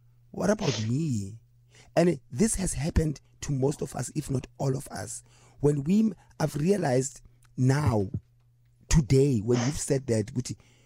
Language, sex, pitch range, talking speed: English, male, 120-155 Hz, 145 wpm